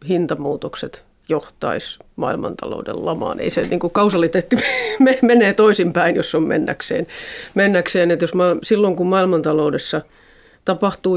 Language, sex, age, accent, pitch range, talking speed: Finnish, female, 40-59, native, 160-190 Hz, 125 wpm